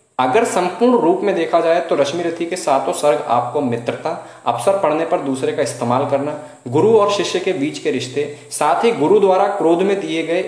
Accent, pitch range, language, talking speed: native, 130-195 Hz, Hindi, 205 wpm